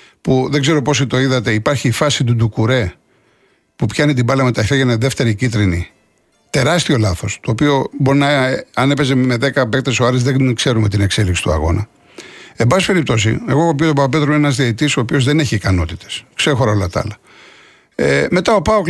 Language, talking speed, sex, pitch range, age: Greek, 195 wpm, male, 115-170 Hz, 60-79